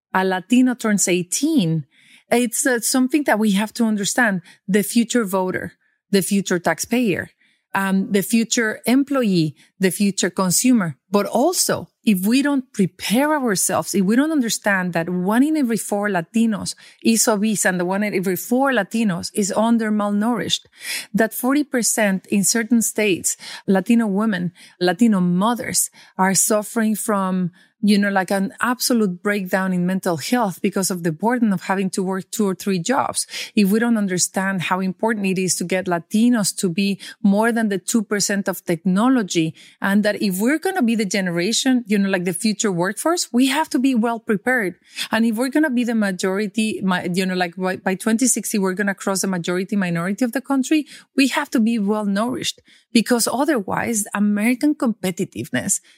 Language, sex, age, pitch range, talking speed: English, female, 30-49, 190-235 Hz, 175 wpm